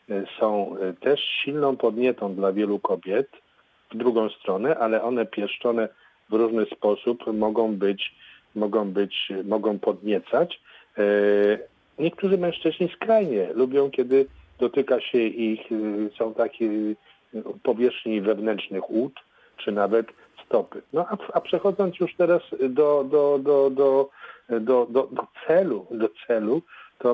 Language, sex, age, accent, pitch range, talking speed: Polish, male, 40-59, native, 110-140 Hz, 120 wpm